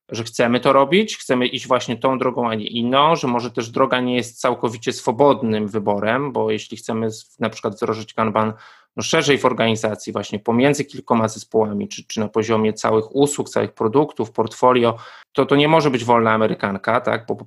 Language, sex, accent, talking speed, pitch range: Polish, male, native, 180 wpm, 120-145 Hz